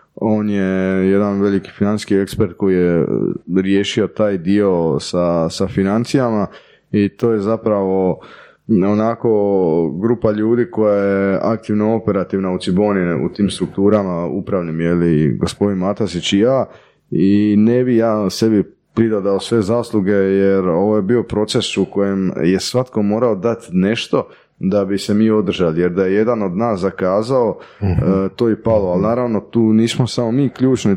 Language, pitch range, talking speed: Croatian, 95-115 Hz, 155 wpm